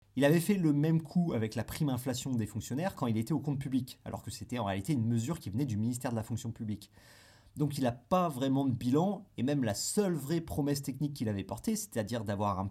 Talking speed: 250 wpm